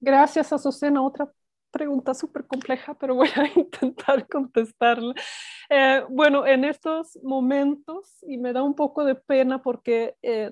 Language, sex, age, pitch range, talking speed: Spanish, female, 30-49, 185-245 Hz, 145 wpm